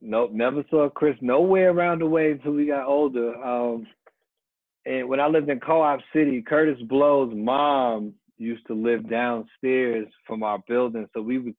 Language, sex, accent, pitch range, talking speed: English, male, American, 110-135 Hz, 170 wpm